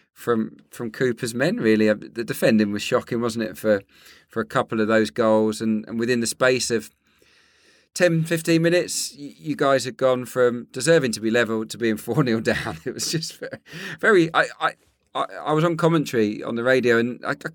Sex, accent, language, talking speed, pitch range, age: male, British, English, 200 wpm, 105-120 Hz, 40-59